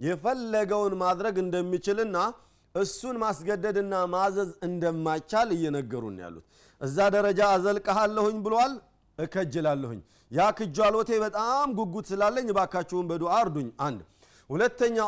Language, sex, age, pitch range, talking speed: Amharic, male, 40-59, 145-205 Hz, 95 wpm